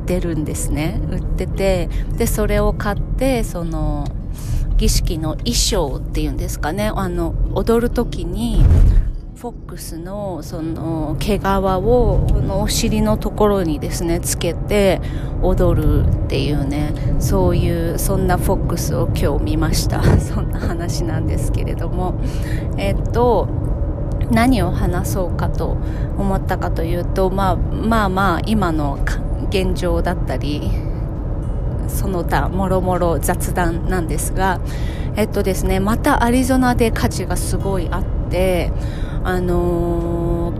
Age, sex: 30-49, female